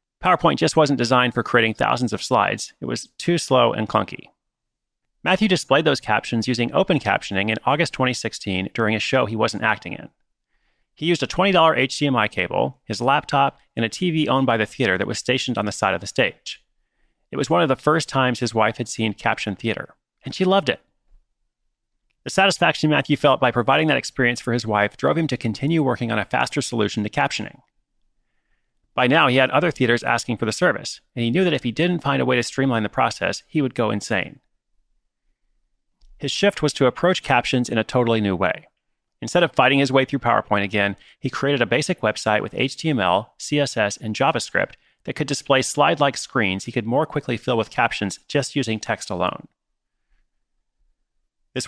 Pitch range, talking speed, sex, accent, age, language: 110-140 Hz, 195 wpm, male, American, 30-49, English